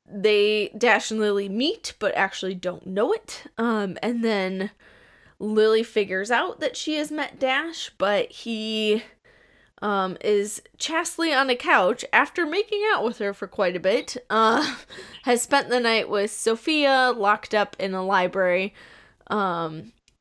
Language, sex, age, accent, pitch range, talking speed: English, female, 20-39, American, 195-230 Hz, 150 wpm